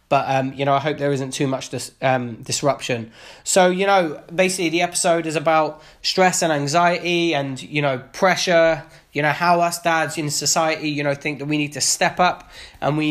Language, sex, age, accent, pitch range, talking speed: English, male, 20-39, British, 145-175 Hz, 210 wpm